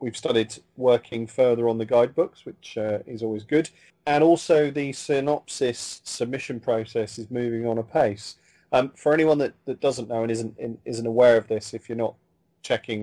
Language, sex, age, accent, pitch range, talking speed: English, male, 30-49, British, 105-125 Hz, 180 wpm